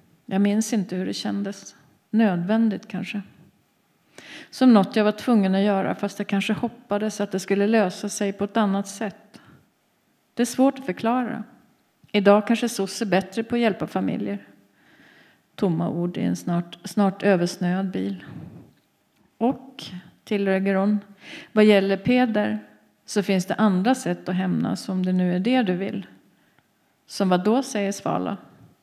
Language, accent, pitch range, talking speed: Swedish, native, 180-210 Hz, 155 wpm